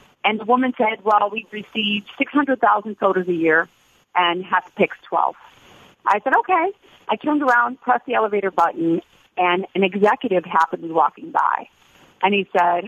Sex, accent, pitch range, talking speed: female, American, 185-270 Hz, 180 wpm